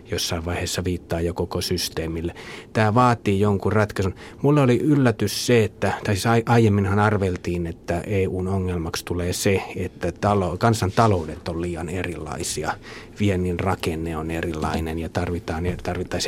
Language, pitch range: Finnish, 90-110 Hz